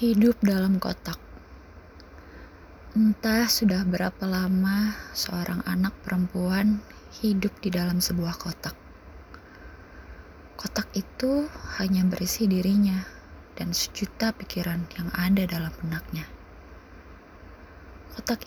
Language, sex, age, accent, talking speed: Indonesian, female, 20-39, native, 90 wpm